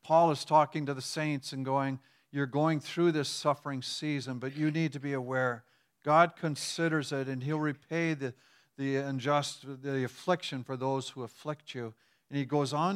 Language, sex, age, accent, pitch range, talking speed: English, male, 50-69, American, 130-155 Hz, 185 wpm